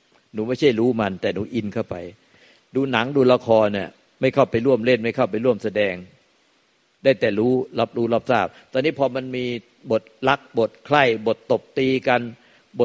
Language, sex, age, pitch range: Thai, male, 60-79, 105-130 Hz